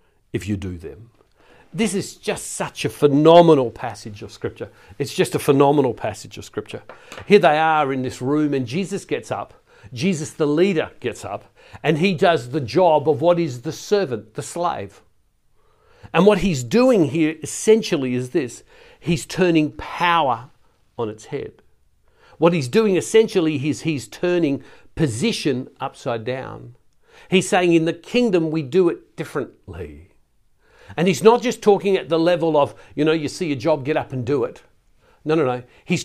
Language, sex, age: English, male, 60-79